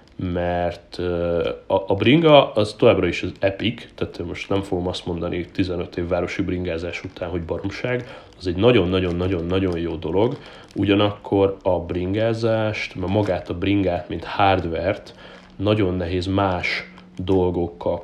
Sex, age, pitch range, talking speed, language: male, 30-49, 90-105 Hz, 135 wpm, Hungarian